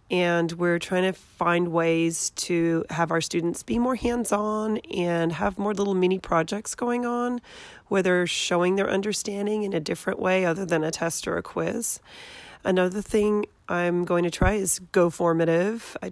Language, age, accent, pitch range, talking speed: English, 30-49, American, 170-205 Hz, 175 wpm